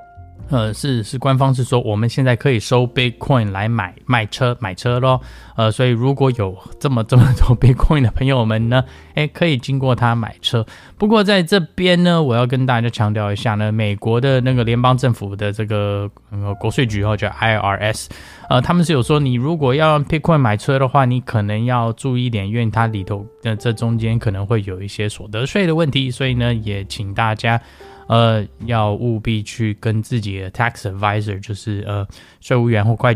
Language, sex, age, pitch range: Chinese, male, 10-29, 110-140 Hz